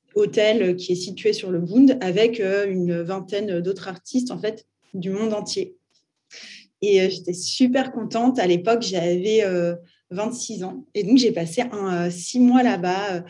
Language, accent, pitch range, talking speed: French, French, 175-215 Hz, 155 wpm